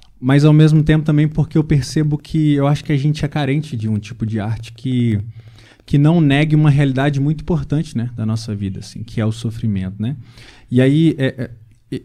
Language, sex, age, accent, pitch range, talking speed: Portuguese, male, 20-39, Brazilian, 110-135 Hz, 215 wpm